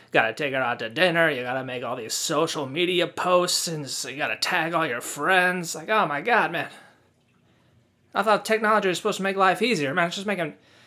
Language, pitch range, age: English, 145-195 Hz, 20-39